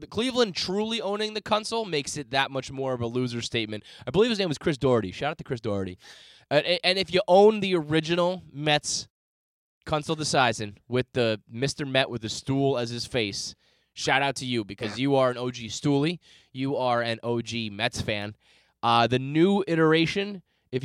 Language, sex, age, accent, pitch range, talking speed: English, male, 20-39, American, 115-155 Hz, 190 wpm